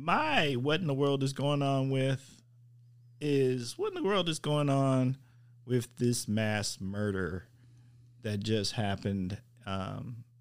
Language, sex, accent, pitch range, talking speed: English, male, American, 110-125 Hz, 145 wpm